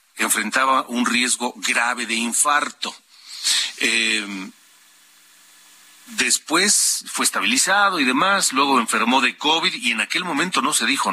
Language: Spanish